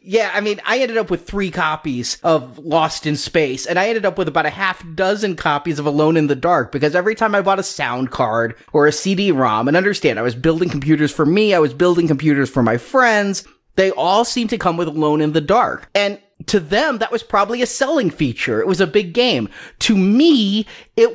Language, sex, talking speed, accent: English, male, 230 wpm, American